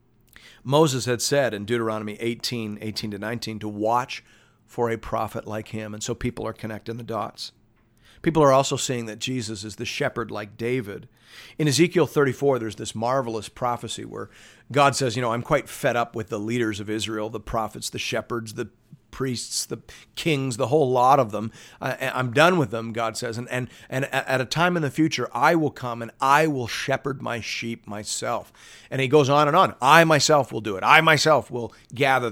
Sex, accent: male, American